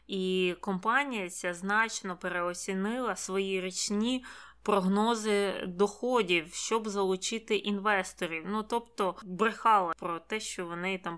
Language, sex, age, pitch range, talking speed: Ukrainian, female, 20-39, 185-225 Hz, 105 wpm